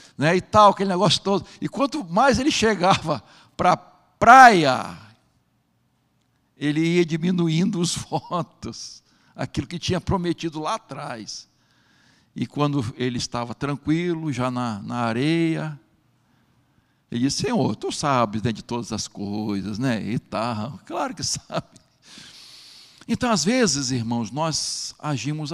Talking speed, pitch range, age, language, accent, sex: 130 wpm, 115-150 Hz, 60-79, Portuguese, Brazilian, male